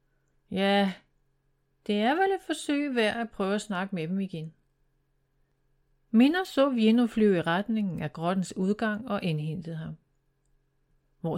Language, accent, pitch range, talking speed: Danish, native, 140-215 Hz, 140 wpm